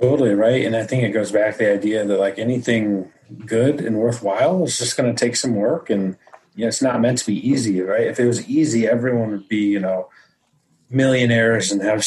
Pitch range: 105-120 Hz